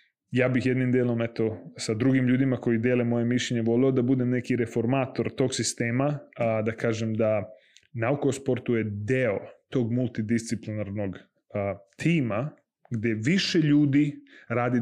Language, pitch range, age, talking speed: Croatian, 115-135 Hz, 20-39, 140 wpm